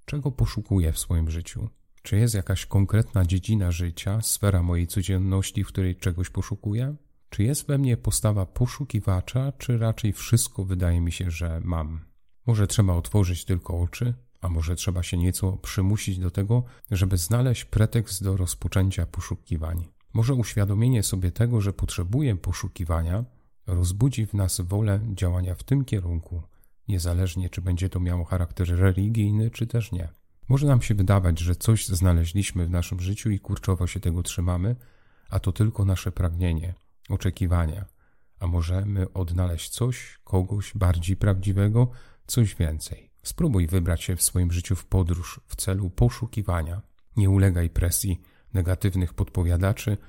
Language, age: Polish, 40-59